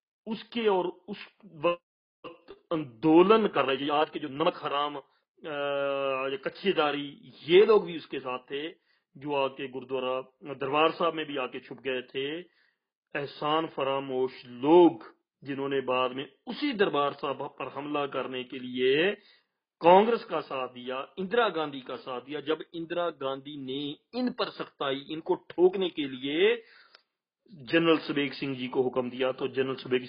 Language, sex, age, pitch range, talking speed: Punjabi, male, 40-59, 135-175 Hz, 160 wpm